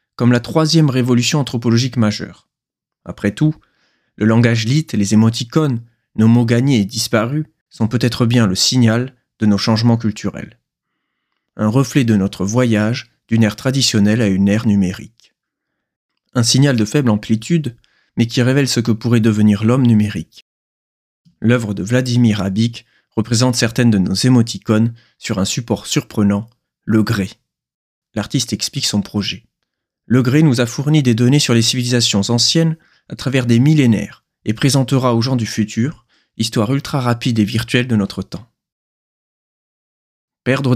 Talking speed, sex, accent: 150 wpm, male, French